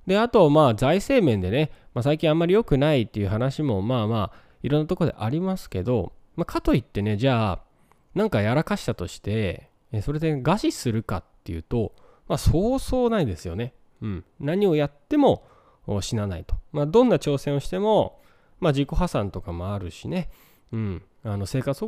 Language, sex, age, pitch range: Japanese, male, 20-39, 100-155 Hz